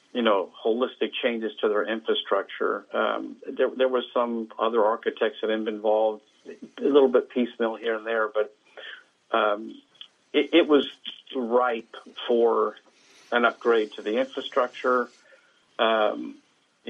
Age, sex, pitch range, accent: 50-69, male, 110-130 Hz, American